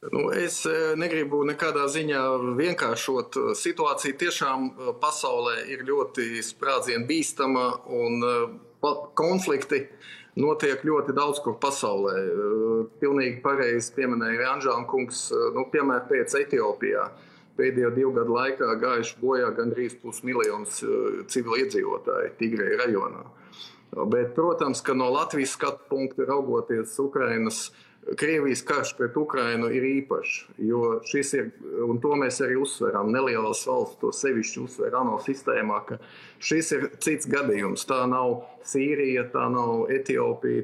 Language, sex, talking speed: English, male, 125 wpm